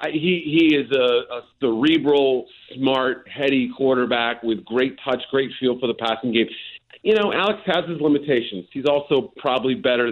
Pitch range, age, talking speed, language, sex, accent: 125-165 Hz, 40-59, 165 wpm, English, male, American